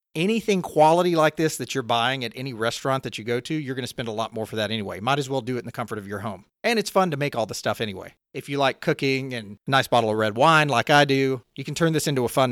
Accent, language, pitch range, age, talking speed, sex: American, English, 120-160 Hz, 40-59, 305 wpm, male